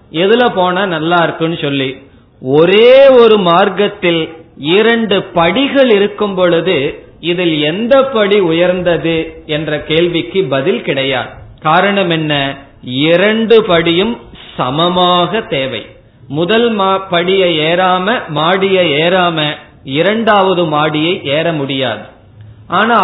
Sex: male